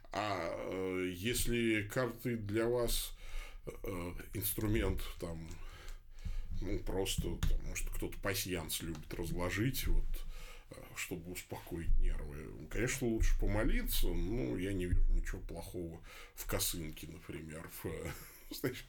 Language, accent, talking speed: Russian, native, 105 wpm